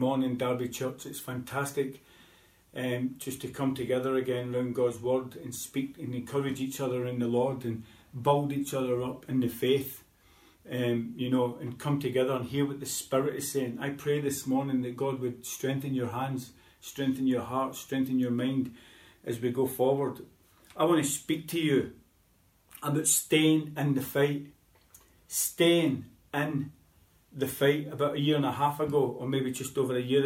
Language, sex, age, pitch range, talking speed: English, male, 40-59, 125-140 Hz, 180 wpm